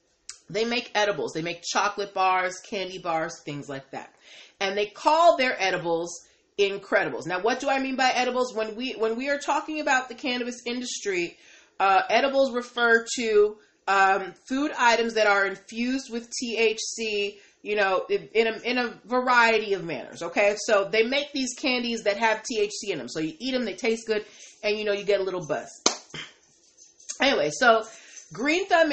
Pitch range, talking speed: 205-255 Hz, 180 wpm